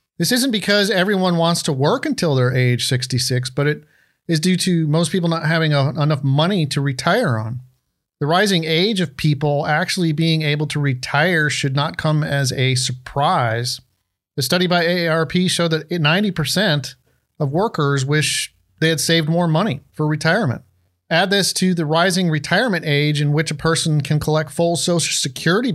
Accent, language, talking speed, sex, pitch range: American, English, 170 wpm, male, 140-170 Hz